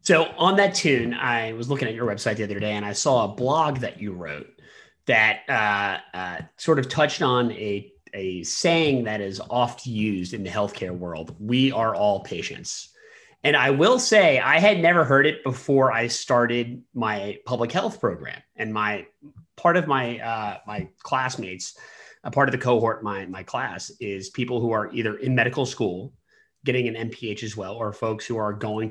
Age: 30-49